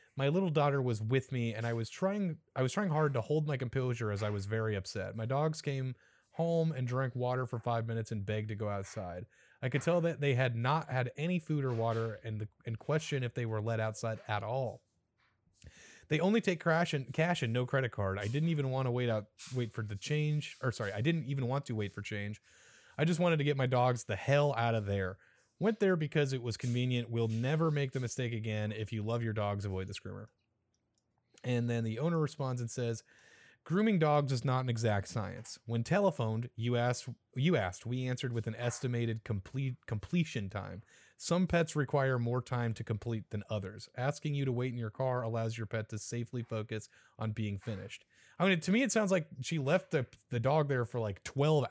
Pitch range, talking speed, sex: 110-145 Hz, 225 wpm, male